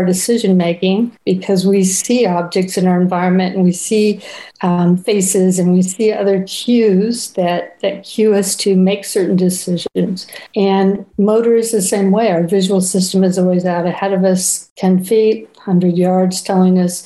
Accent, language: American, English